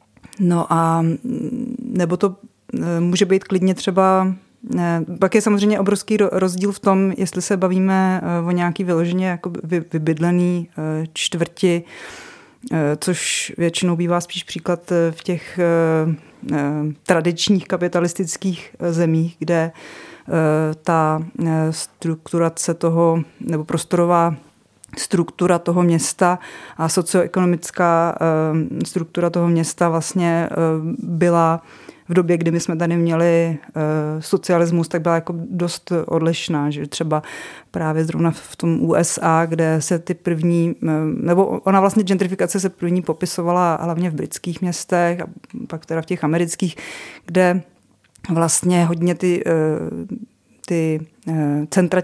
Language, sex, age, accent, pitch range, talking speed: Czech, female, 30-49, native, 165-180 Hz, 110 wpm